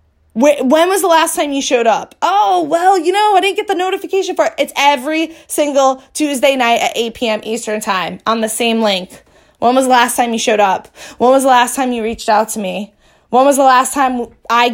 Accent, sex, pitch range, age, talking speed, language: American, female, 220-285 Hz, 20-39, 230 wpm, English